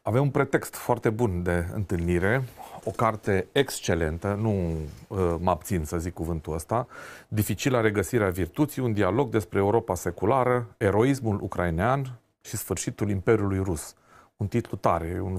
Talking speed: 140 wpm